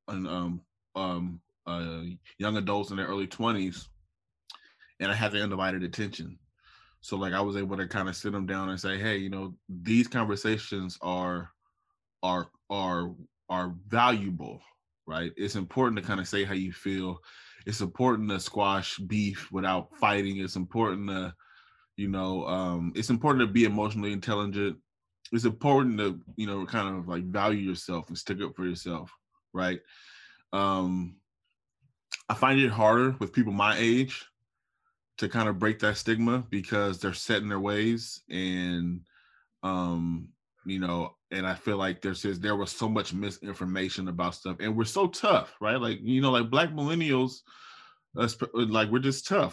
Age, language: 20-39, English